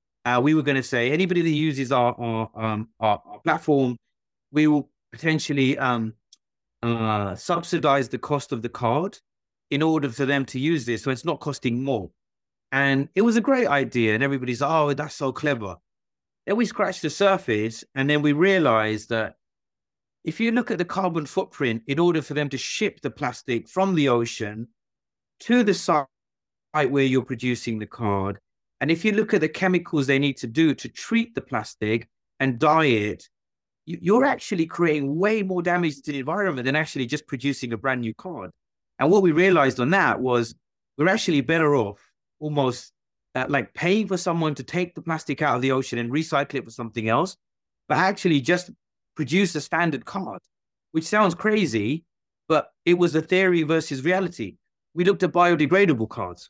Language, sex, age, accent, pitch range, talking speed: English, male, 30-49, British, 120-170 Hz, 180 wpm